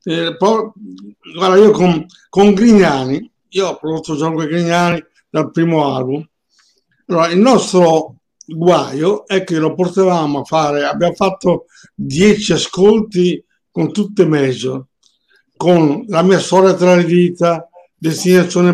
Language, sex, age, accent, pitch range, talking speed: Italian, male, 60-79, native, 160-195 Hz, 130 wpm